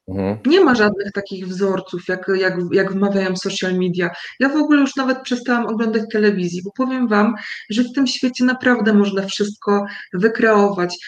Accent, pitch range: native, 210-270 Hz